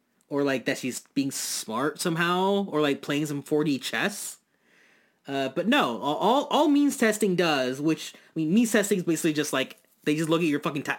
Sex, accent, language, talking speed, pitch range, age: male, American, English, 200 wpm, 135-180 Hz, 20-39